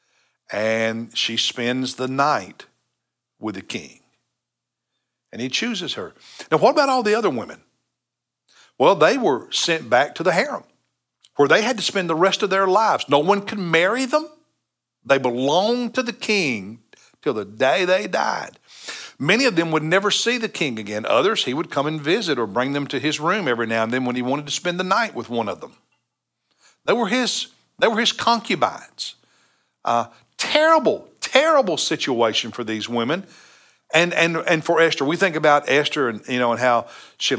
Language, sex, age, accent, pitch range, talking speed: English, male, 60-79, American, 120-190 Hz, 190 wpm